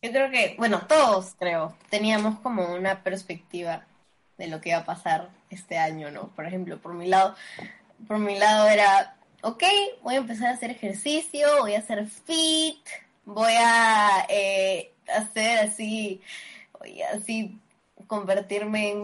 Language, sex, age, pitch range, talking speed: Spanish, female, 10-29, 195-265 Hz, 155 wpm